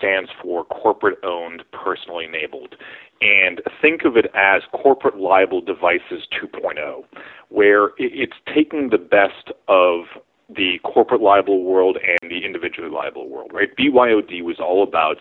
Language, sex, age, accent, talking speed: English, male, 30-49, American, 135 wpm